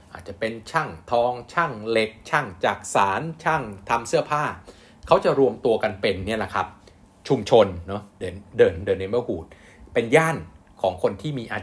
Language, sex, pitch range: Thai, male, 100-135 Hz